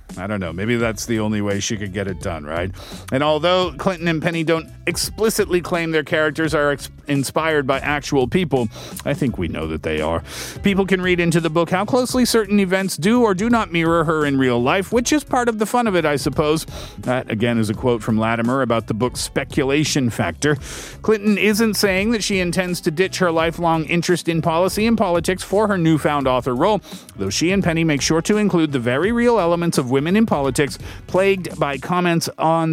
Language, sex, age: Korean, male, 40-59